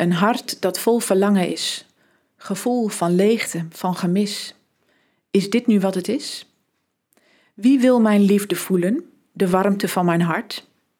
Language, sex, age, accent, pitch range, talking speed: Dutch, female, 40-59, Dutch, 175-220 Hz, 145 wpm